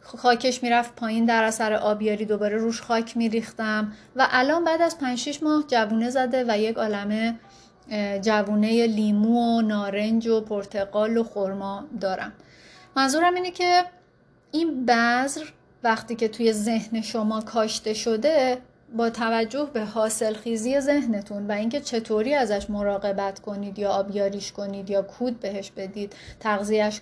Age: 30-49